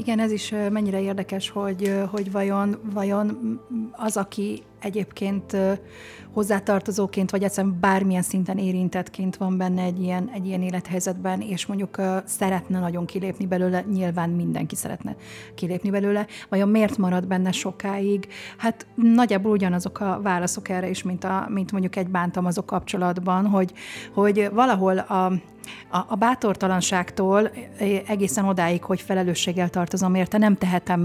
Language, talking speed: Hungarian, 130 wpm